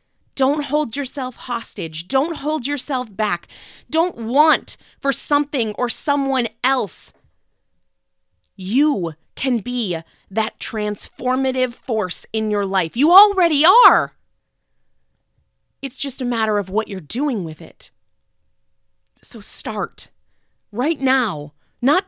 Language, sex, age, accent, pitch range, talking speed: English, female, 30-49, American, 225-325 Hz, 115 wpm